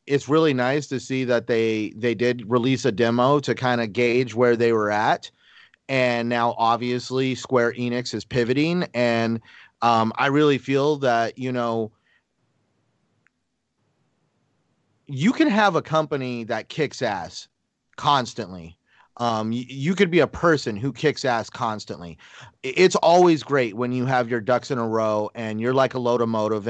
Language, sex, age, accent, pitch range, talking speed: English, male, 30-49, American, 115-140 Hz, 160 wpm